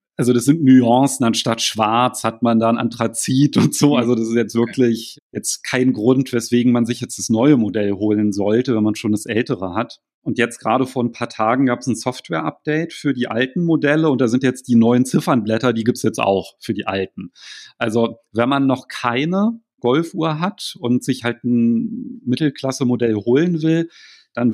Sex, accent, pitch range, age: male, German, 110-130 Hz, 40-59